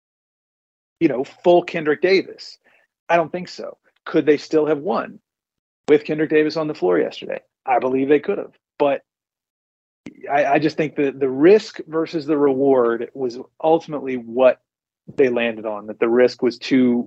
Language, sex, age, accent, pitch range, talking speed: English, male, 40-59, American, 125-165 Hz, 170 wpm